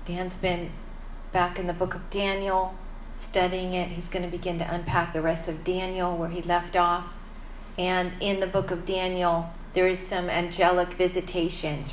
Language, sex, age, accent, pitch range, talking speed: English, female, 40-59, American, 170-195 Hz, 175 wpm